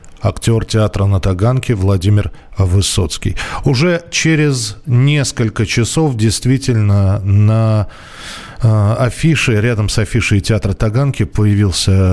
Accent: native